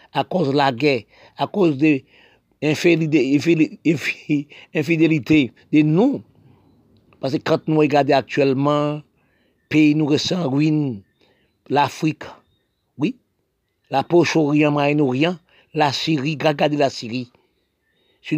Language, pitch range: French, 145-175 Hz